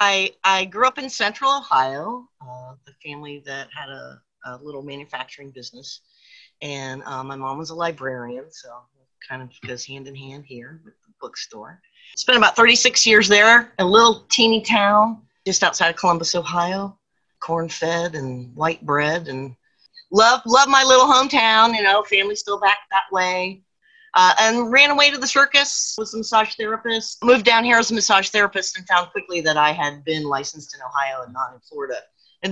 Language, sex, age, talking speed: English, female, 40-59, 185 wpm